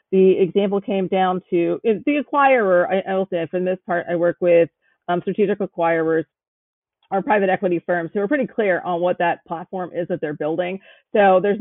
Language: English